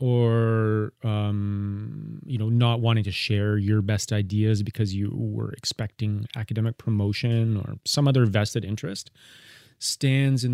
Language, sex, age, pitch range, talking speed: English, male, 30-49, 105-125 Hz, 135 wpm